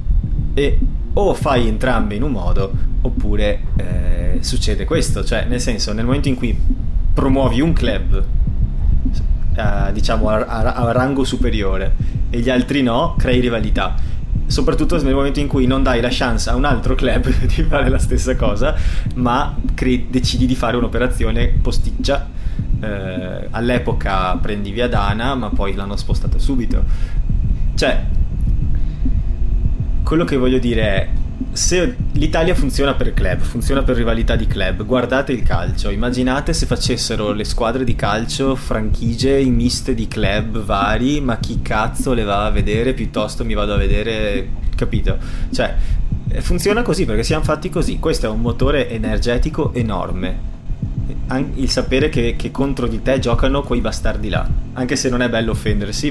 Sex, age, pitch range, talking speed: male, 30-49, 105-130 Hz, 155 wpm